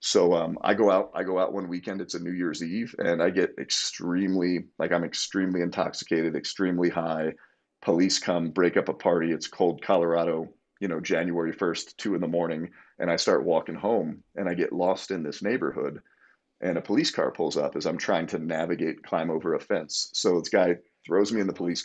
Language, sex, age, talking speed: English, male, 30-49, 210 wpm